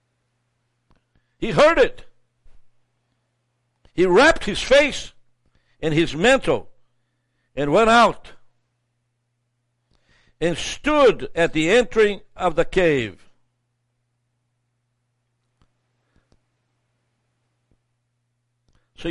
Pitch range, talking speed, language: 120-175 Hz, 70 wpm, English